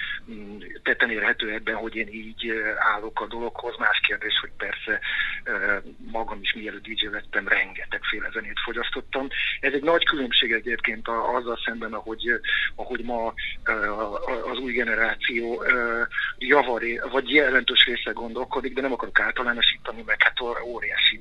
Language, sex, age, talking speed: Hungarian, male, 50-69, 140 wpm